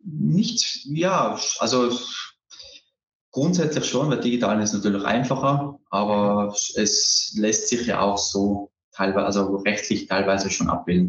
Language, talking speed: German, 130 wpm